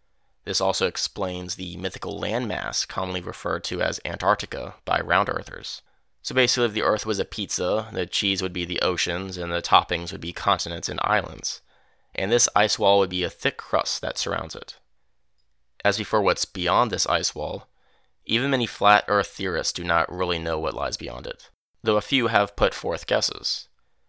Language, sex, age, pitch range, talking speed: English, male, 20-39, 85-100 Hz, 180 wpm